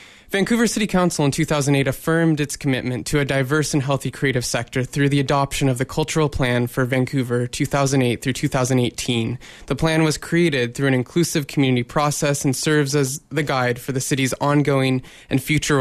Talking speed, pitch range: 180 wpm, 125-150 Hz